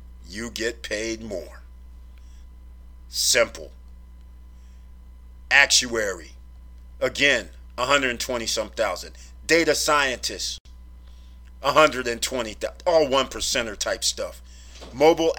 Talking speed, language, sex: 75 wpm, English, male